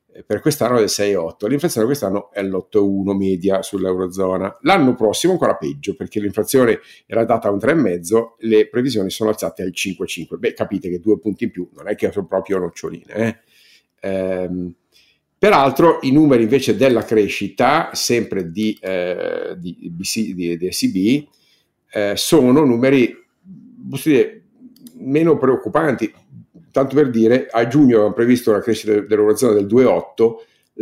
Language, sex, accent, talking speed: Italian, male, native, 150 wpm